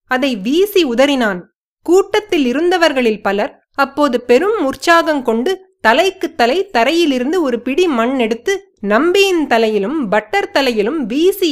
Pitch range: 240-355 Hz